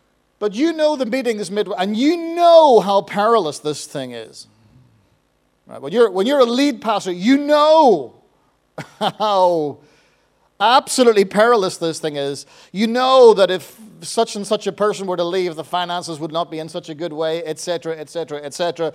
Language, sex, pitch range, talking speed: English, male, 160-230 Hz, 175 wpm